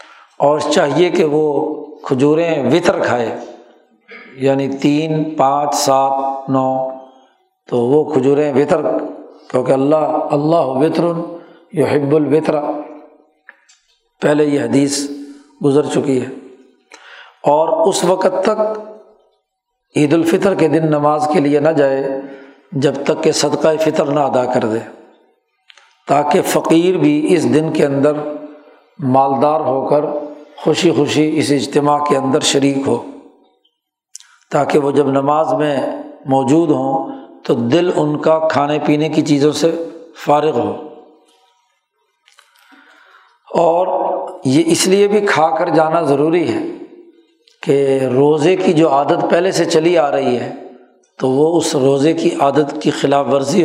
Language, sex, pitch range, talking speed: Urdu, male, 140-165 Hz, 130 wpm